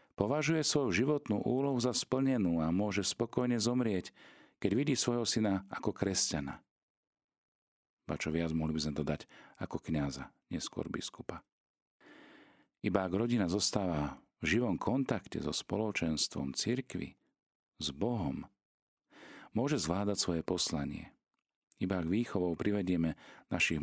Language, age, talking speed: Slovak, 40-59, 115 wpm